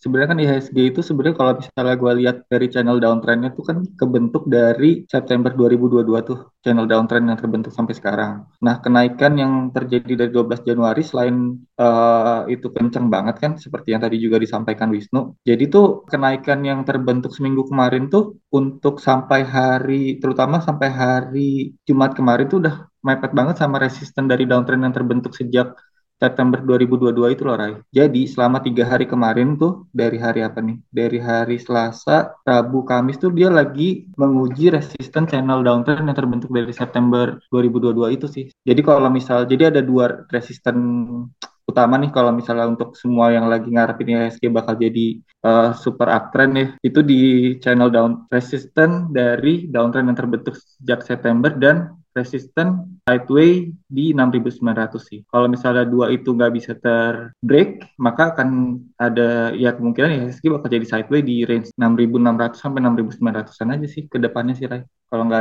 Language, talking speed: Indonesian, 160 wpm